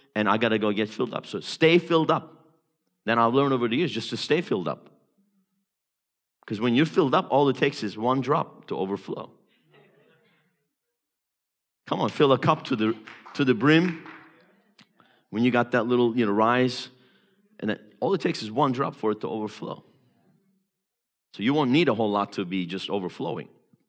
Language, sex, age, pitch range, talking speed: English, male, 50-69, 115-185 Hz, 190 wpm